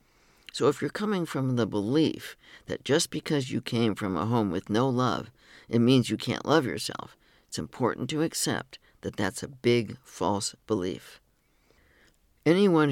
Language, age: English, 60-79